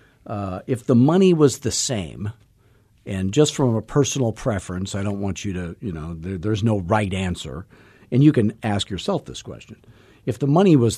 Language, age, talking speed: English, 50-69, 190 wpm